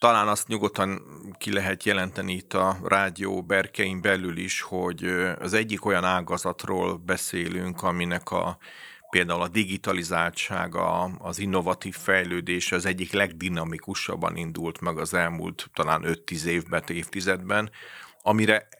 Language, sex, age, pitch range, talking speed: Hungarian, male, 40-59, 85-95 Hz, 120 wpm